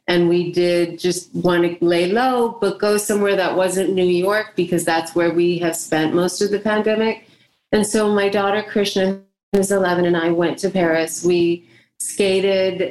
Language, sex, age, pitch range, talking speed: English, female, 30-49, 165-195 Hz, 180 wpm